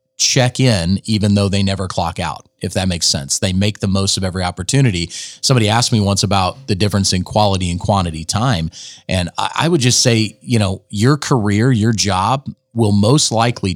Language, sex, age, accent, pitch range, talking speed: English, male, 30-49, American, 95-115 Hz, 195 wpm